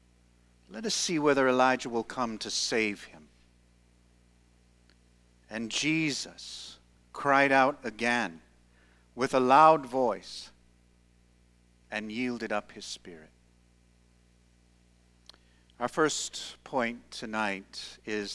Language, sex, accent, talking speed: English, male, American, 95 wpm